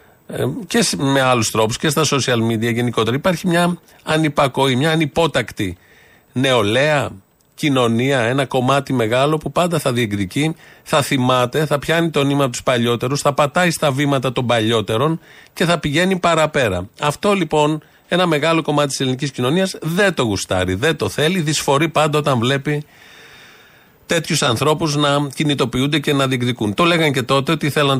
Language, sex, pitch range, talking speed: Greek, male, 120-150 Hz, 155 wpm